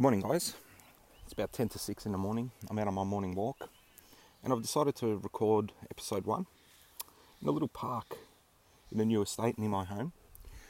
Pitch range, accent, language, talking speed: 95-110 Hz, Australian, English, 195 wpm